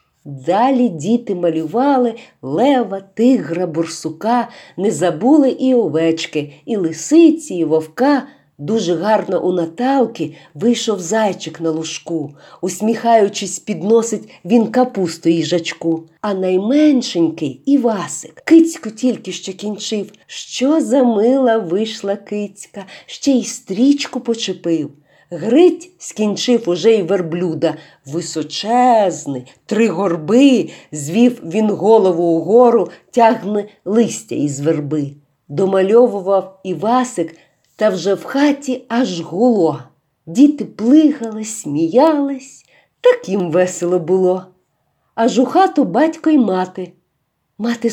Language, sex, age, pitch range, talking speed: Ukrainian, female, 50-69, 175-255 Hz, 105 wpm